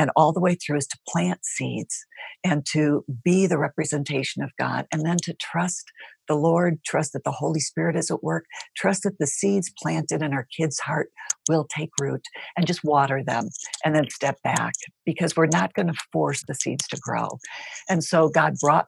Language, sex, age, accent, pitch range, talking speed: English, female, 60-79, American, 140-165 Hz, 205 wpm